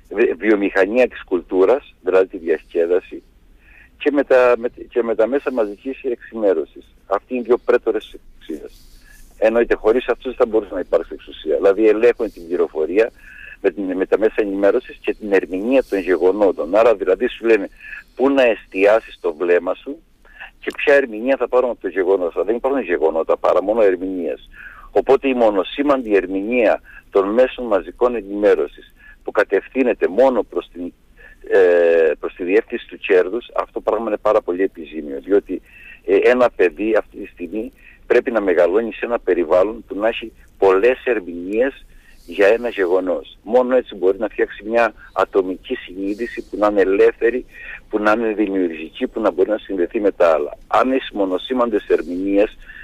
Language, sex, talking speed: Greek, male, 155 wpm